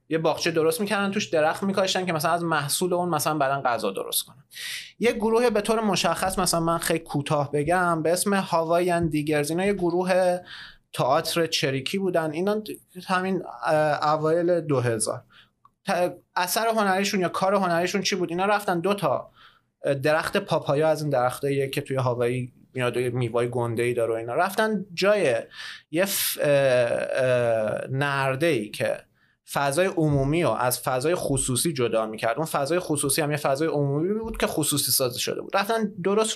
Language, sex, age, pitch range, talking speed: Persian, male, 30-49, 150-200 Hz, 160 wpm